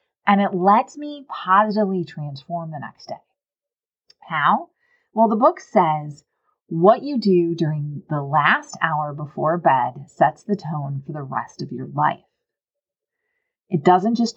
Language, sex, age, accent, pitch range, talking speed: English, female, 30-49, American, 155-220 Hz, 145 wpm